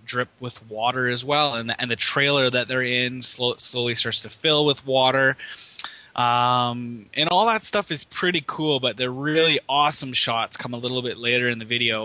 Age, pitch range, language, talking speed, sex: 20-39, 115-135 Hz, English, 190 wpm, male